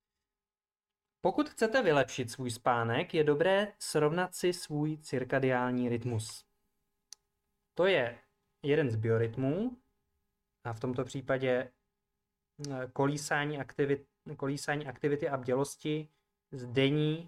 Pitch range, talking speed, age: 125-160 Hz, 95 wpm, 20-39